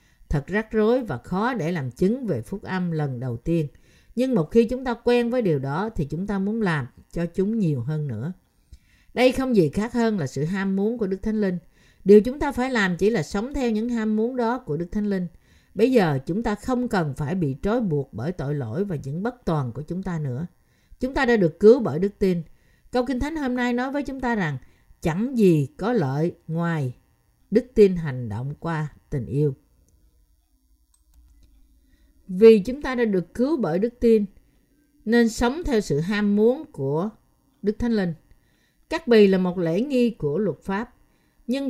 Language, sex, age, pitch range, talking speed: Vietnamese, female, 50-69, 160-230 Hz, 205 wpm